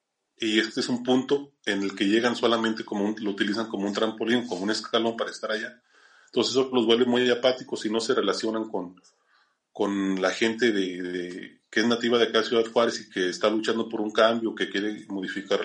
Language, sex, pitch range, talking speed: Spanish, male, 105-130 Hz, 215 wpm